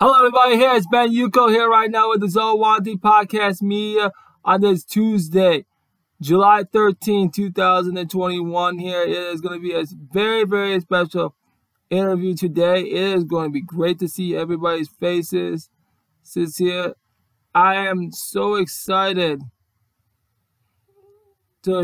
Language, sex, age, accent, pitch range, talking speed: English, male, 20-39, American, 140-195 Hz, 135 wpm